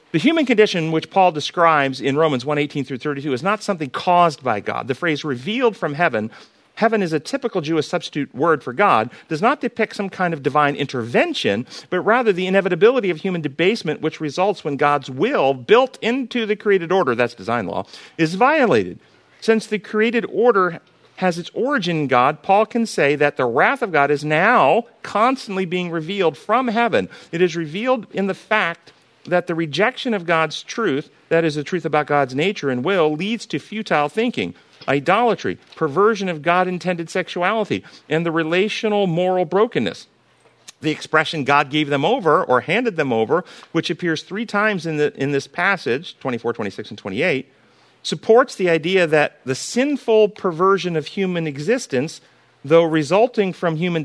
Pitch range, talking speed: 150-210 Hz, 175 wpm